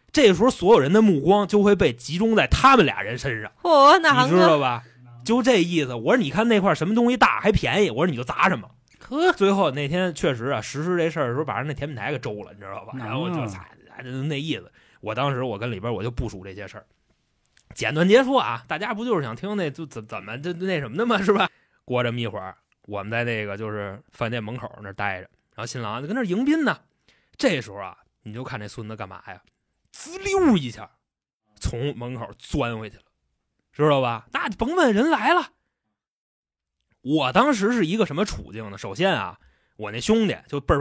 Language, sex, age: Chinese, male, 20-39